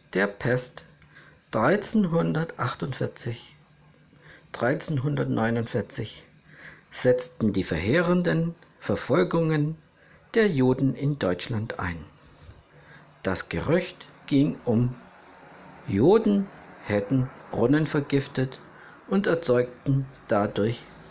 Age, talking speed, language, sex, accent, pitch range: 60-79, 70 wpm, German, male, German, 125-175 Hz